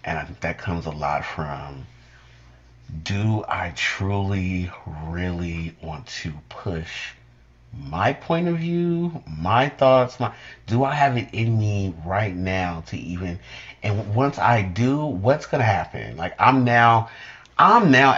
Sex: male